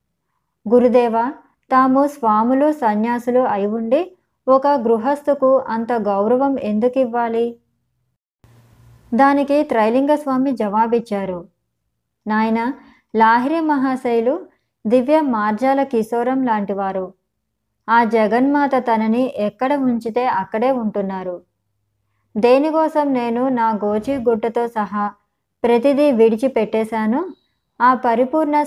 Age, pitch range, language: 20-39, 215-265 Hz, Telugu